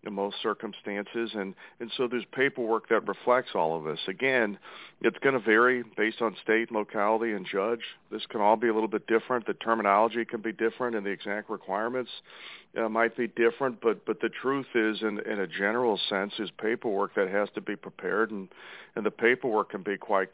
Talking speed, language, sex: 205 wpm, English, male